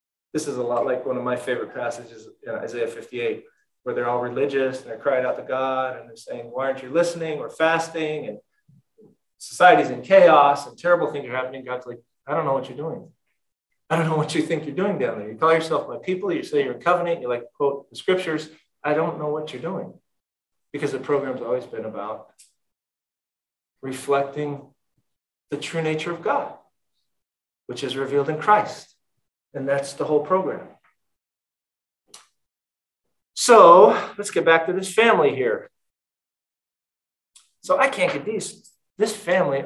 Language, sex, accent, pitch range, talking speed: English, male, American, 135-200 Hz, 175 wpm